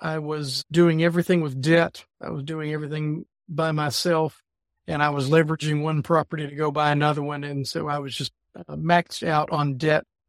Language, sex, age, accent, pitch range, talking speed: English, male, 50-69, American, 145-175 Hz, 190 wpm